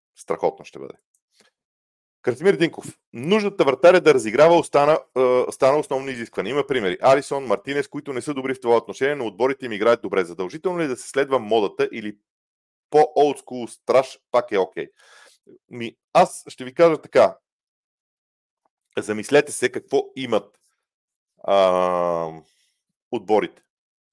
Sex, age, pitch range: male, 40-59, 115-155 Hz